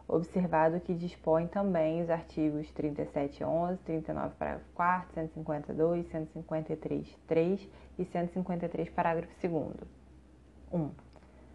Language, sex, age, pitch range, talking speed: Portuguese, female, 20-39, 155-190 Hz, 90 wpm